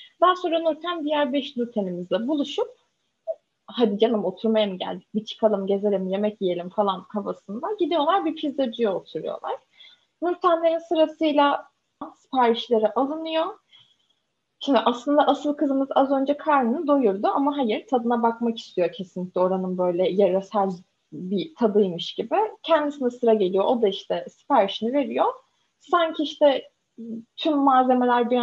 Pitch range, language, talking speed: 205-300 Hz, Turkish, 125 wpm